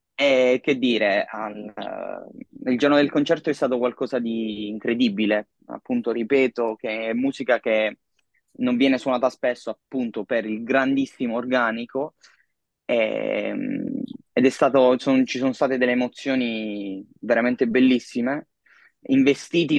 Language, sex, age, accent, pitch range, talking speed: Italian, male, 20-39, native, 115-140 Hz, 120 wpm